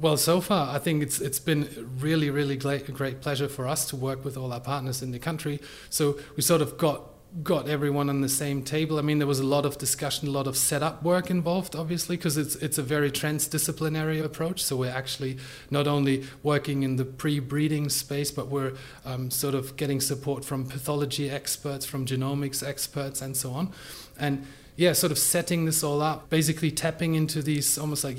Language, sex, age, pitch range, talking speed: English, male, 30-49, 135-160 Hz, 210 wpm